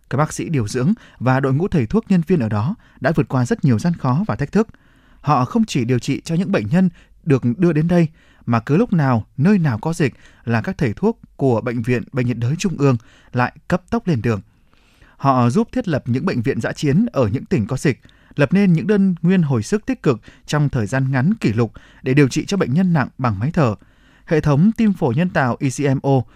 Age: 20-39